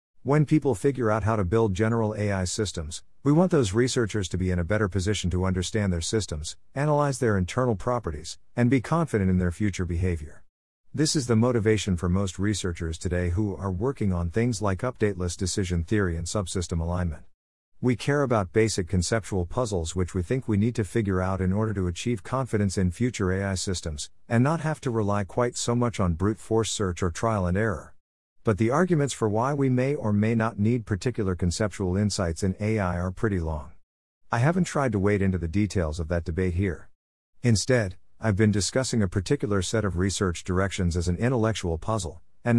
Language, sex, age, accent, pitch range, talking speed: English, male, 50-69, American, 90-115 Hz, 195 wpm